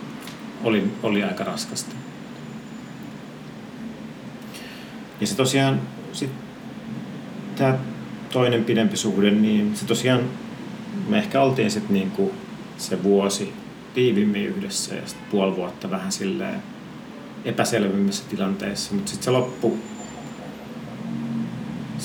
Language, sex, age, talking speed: Finnish, male, 40-59, 95 wpm